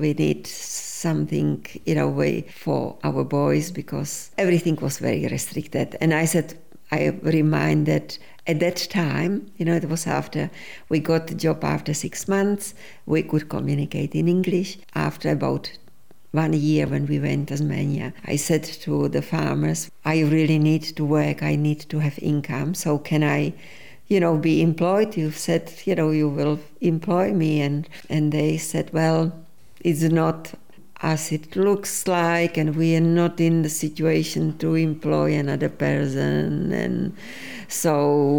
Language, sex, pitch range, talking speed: English, female, 145-170 Hz, 160 wpm